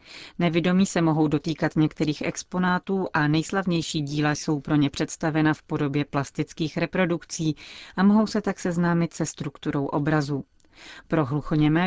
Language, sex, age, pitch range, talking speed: Czech, female, 40-59, 150-175 Hz, 135 wpm